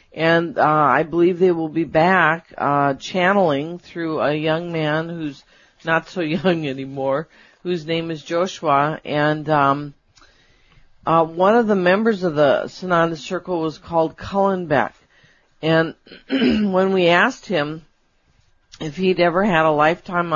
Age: 50-69